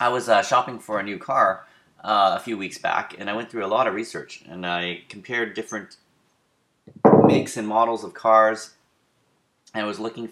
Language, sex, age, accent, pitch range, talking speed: English, male, 30-49, American, 95-125 Hz, 200 wpm